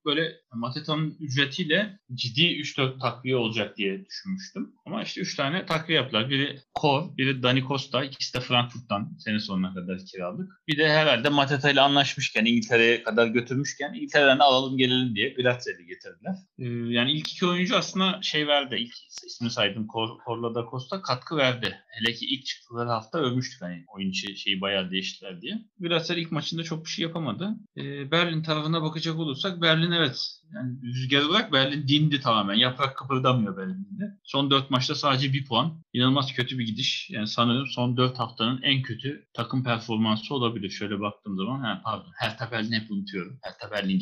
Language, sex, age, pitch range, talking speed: Turkish, male, 30-49, 120-165 Hz, 170 wpm